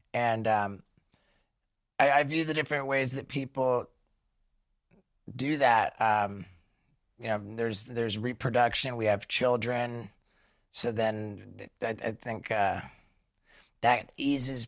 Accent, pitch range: American, 105-125 Hz